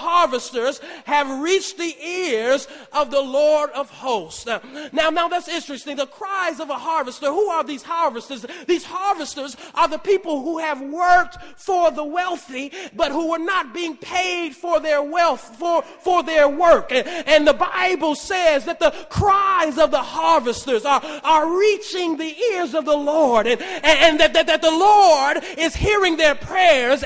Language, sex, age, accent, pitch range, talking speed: English, male, 40-59, American, 290-350 Hz, 175 wpm